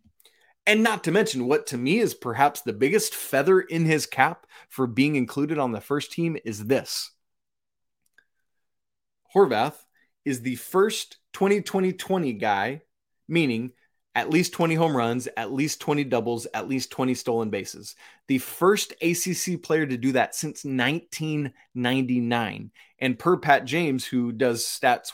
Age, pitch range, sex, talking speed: 20-39, 120-165 Hz, male, 150 wpm